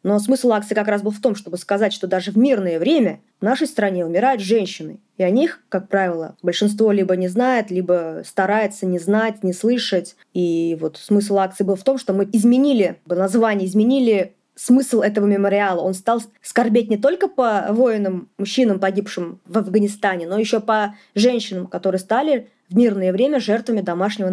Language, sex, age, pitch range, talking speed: Russian, female, 20-39, 185-230 Hz, 180 wpm